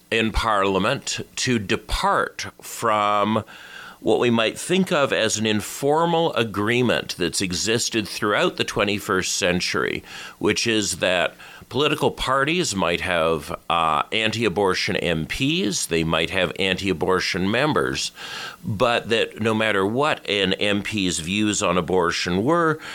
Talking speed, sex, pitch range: 120 wpm, male, 90-120 Hz